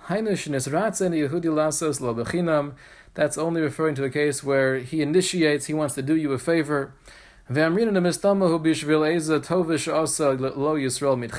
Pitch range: 135-165 Hz